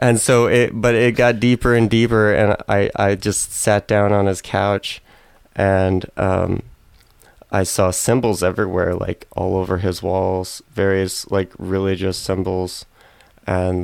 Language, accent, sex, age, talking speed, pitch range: English, American, male, 20-39, 150 wpm, 95-115 Hz